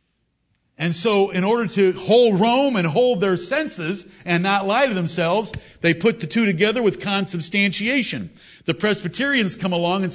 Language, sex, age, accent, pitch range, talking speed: English, male, 50-69, American, 160-195 Hz, 165 wpm